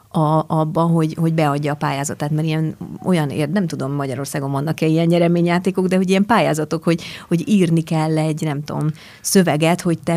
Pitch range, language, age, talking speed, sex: 155-190 Hz, Hungarian, 30-49, 175 wpm, female